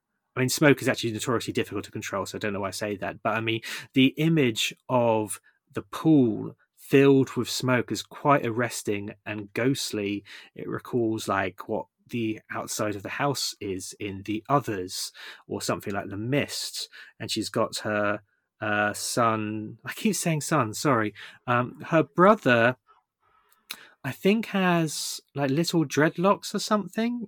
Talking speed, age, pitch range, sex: 160 wpm, 30-49, 110-150 Hz, male